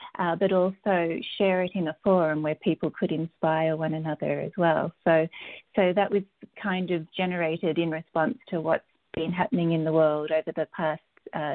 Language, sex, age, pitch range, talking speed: English, female, 30-49, 165-195 Hz, 185 wpm